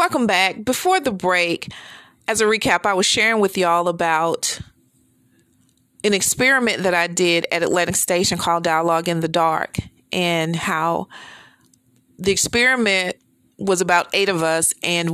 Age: 40-59